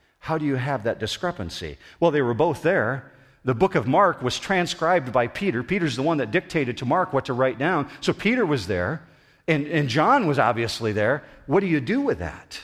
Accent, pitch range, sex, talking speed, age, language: American, 110-150 Hz, male, 220 wpm, 50-69, English